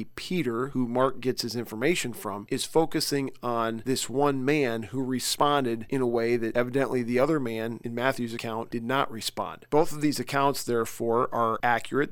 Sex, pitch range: male, 120-145 Hz